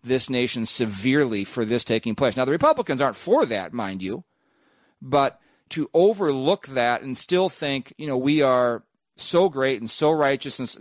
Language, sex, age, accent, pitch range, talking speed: English, male, 40-59, American, 120-150 Hz, 180 wpm